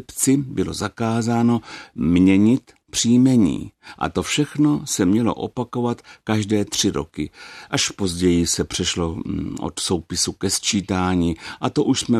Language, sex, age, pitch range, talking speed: Czech, male, 60-79, 85-105 Hz, 125 wpm